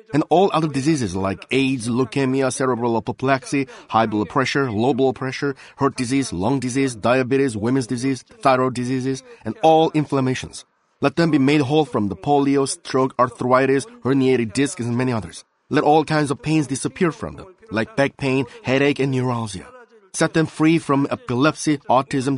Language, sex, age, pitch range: Korean, male, 30-49, 130-160 Hz